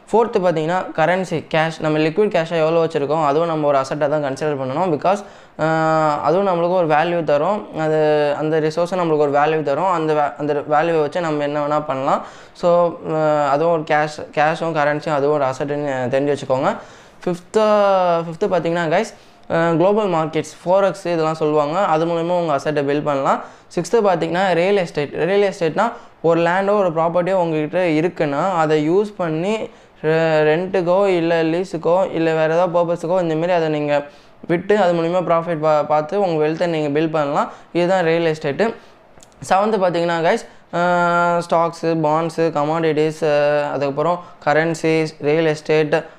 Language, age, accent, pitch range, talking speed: Tamil, 20-39, native, 150-175 Hz, 145 wpm